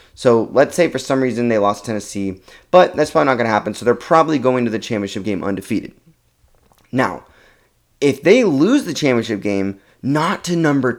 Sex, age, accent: male, 20-39, American